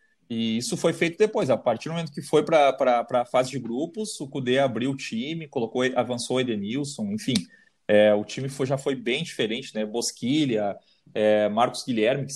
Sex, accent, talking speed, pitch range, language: male, Brazilian, 195 wpm, 120-175 Hz, Portuguese